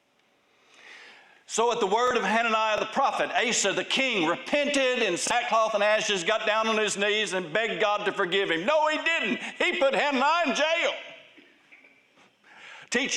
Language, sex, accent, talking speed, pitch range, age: English, male, American, 165 wpm, 215-335 Hz, 60-79